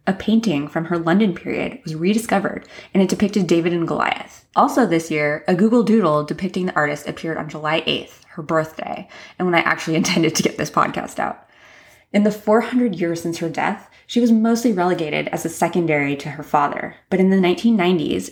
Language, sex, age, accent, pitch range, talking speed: English, female, 20-39, American, 160-195 Hz, 195 wpm